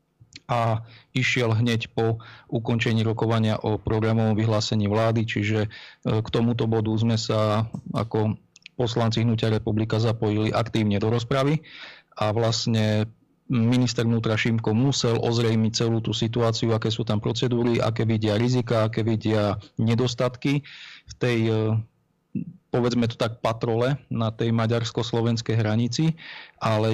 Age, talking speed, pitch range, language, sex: 40-59, 125 wpm, 110-125 Hz, Slovak, male